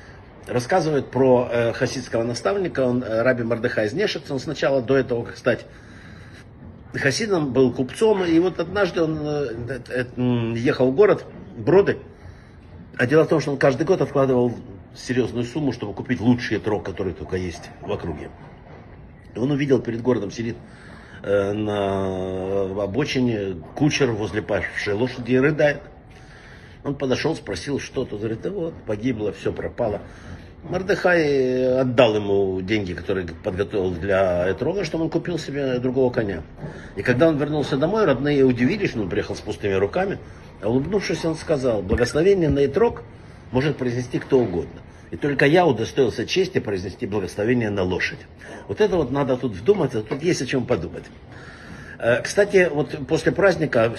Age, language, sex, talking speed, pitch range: 60-79, Russian, male, 150 wpm, 105-145 Hz